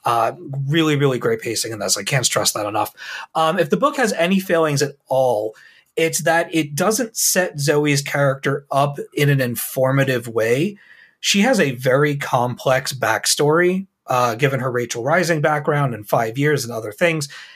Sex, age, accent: male, 30-49, American